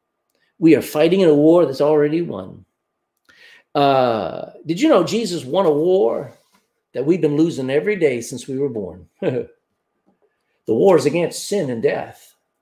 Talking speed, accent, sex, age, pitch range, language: 160 wpm, American, male, 50-69, 150-225 Hz, English